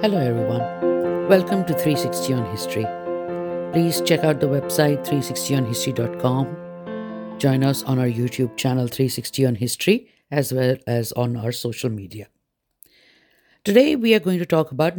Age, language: 50-69, English